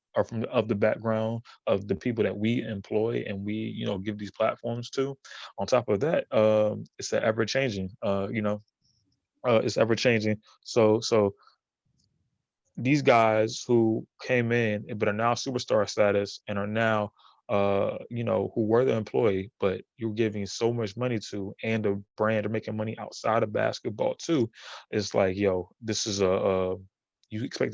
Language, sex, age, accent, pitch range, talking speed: English, male, 20-39, American, 100-115 Hz, 180 wpm